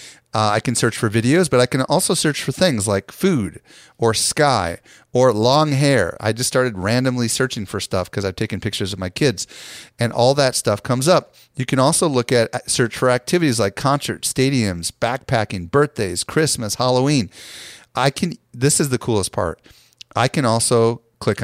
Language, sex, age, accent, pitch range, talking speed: English, male, 40-59, American, 105-130 Hz, 185 wpm